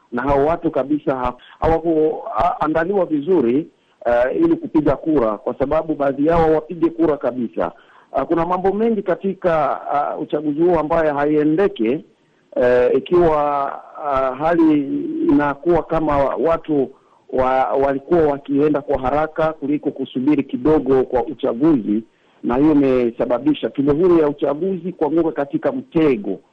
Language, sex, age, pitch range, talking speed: Swahili, male, 50-69, 130-175 Hz, 125 wpm